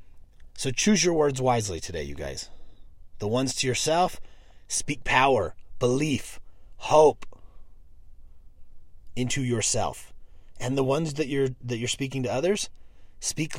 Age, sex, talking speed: 30-49, male, 130 wpm